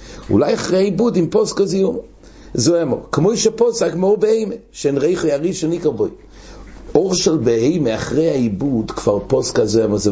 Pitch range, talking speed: 115-175 Hz, 150 wpm